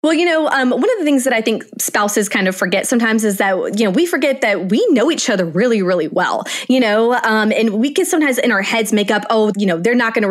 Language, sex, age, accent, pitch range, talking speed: English, female, 20-39, American, 185-240 Hz, 285 wpm